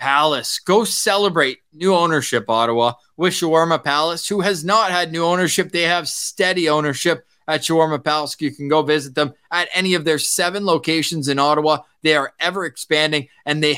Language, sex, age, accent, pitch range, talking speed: English, male, 20-39, American, 130-170 Hz, 180 wpm